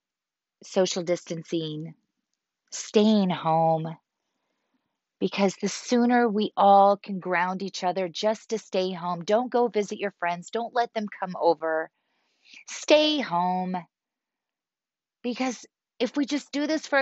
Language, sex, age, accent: English, female, 20-39, American